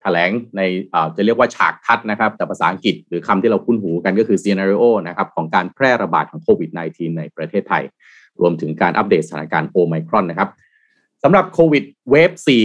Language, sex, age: Thai, male, 30-49